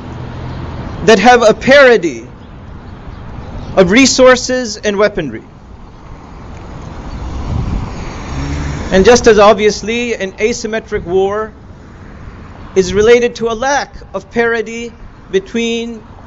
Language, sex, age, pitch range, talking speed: English, male, 40-59, 190-235 Hz, 85 wpm